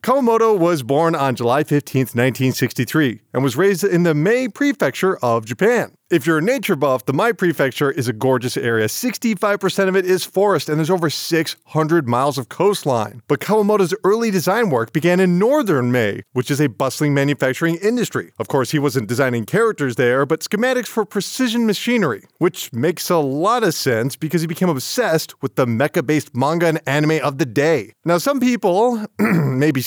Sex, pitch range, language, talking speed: male, 140-200 Hz, English, 180 wpm